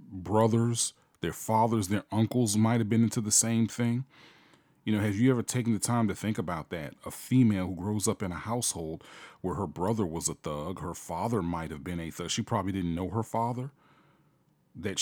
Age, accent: 40-59, American